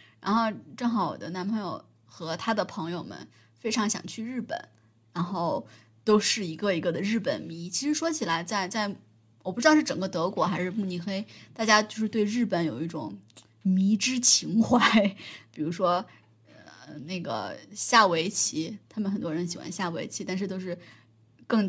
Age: 20-39